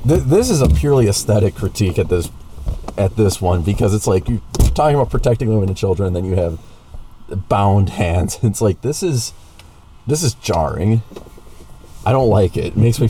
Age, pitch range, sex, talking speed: 40-59, 85-105 Hz, male, 185 wpm